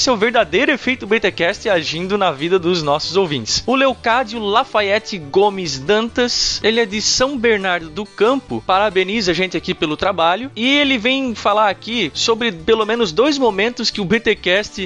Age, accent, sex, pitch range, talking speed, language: 20-39, Brazilian, male, 175-230 Hz, 180 wpm, Portuguese